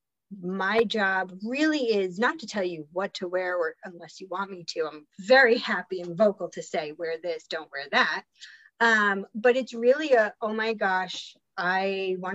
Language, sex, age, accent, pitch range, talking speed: English, female, 30-49, American, 180-230 Hz, 190 wpm